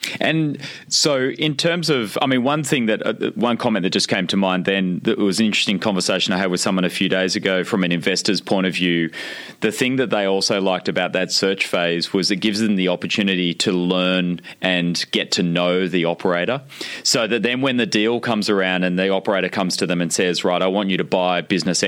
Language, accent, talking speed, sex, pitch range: English, Australian, 235 wpm, male, 90-105 Hz